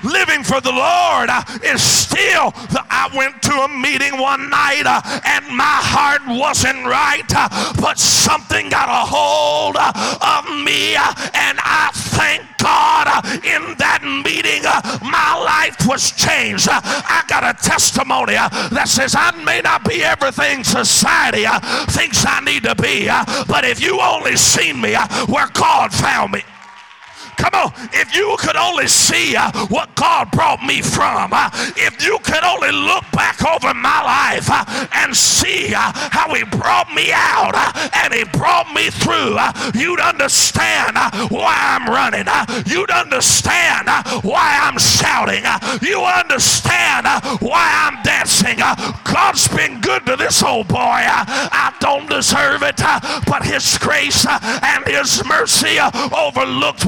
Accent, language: American, English